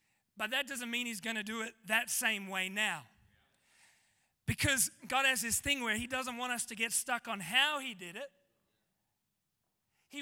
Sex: male